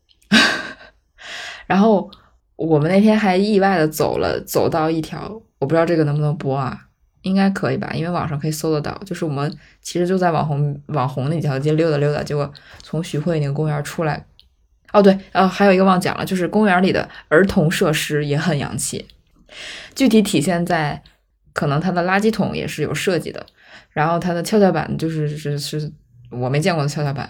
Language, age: Chinese, 20-39